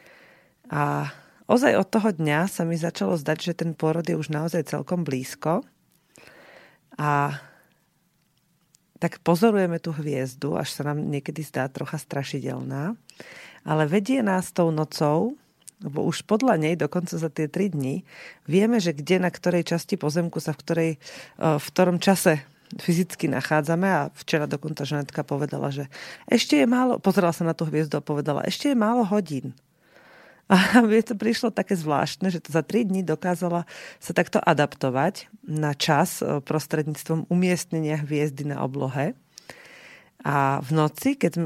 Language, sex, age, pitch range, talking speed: Slovak, female, 40-59, 150-190 Hz, 150 wpm